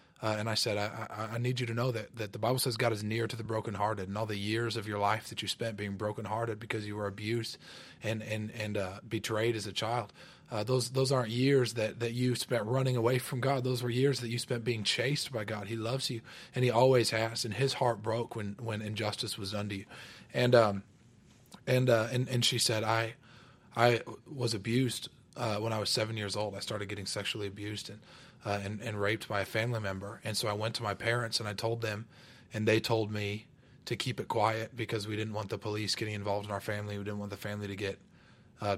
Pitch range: 105-120 Hz